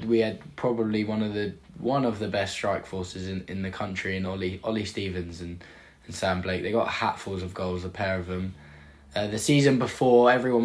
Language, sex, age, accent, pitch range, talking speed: English, male, 10-29, British, 105-115 Hz, 215 wpm